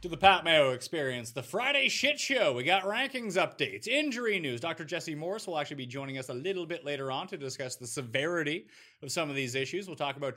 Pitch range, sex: 135-210 Hz, male